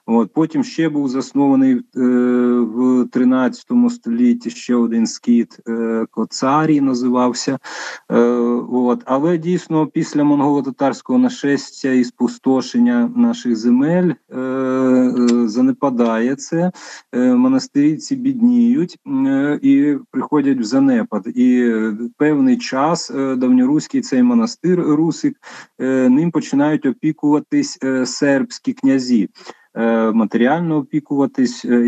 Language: English